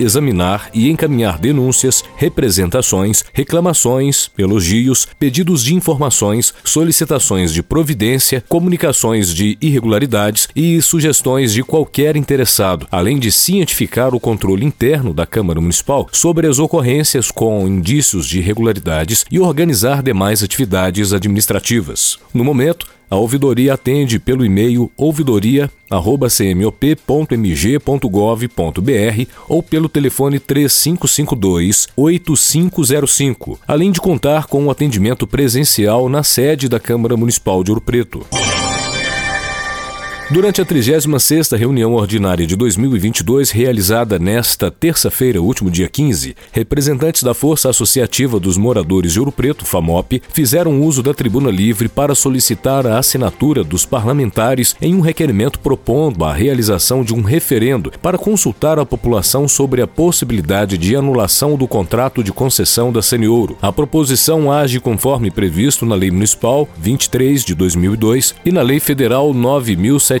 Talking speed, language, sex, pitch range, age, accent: 120 wpm, Portuguese, male, 105-145 Hz, 40-59, Brazilian